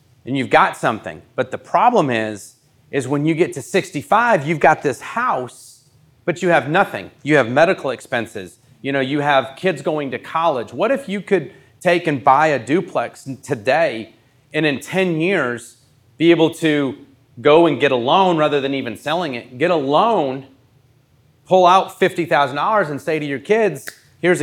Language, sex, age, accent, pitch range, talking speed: English, male, 30-49, American, 130-180 Hz, 180 wpm